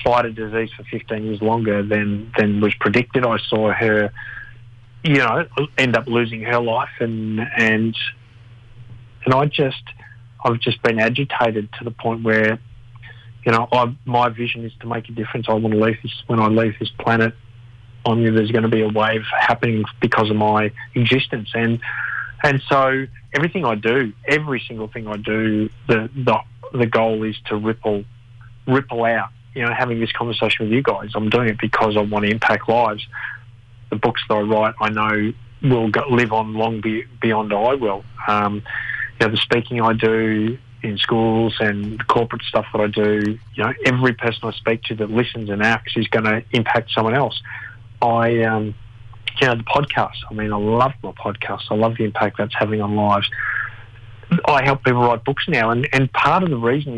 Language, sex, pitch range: English, male, 110-120 Hz